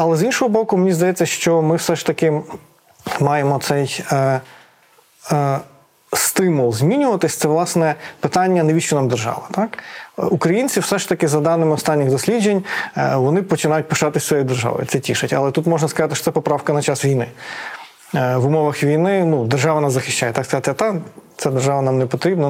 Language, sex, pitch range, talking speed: Ukrainian, male, 145-170 Hz, 165 wpm